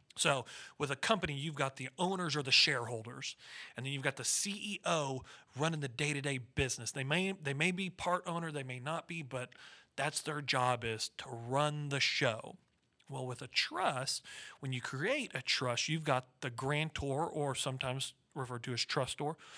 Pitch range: 125-165 Hz